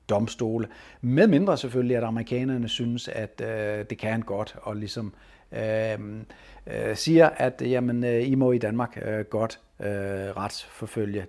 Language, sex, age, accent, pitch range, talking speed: Danish, male, 60-79, native, 100-125 Hz, 100 wpm